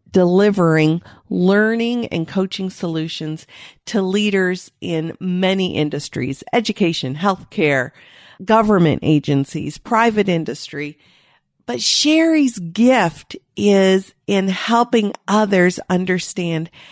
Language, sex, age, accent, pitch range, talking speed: English, female, 50-69, American, 165-220 Hz, 85 wpm